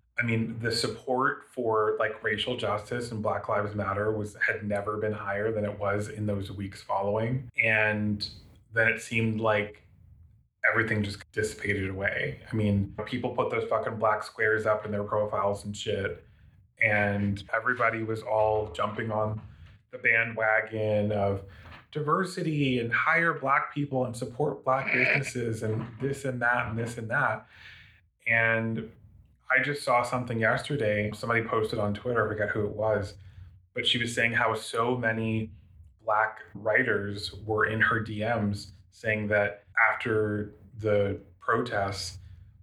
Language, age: English, 20-39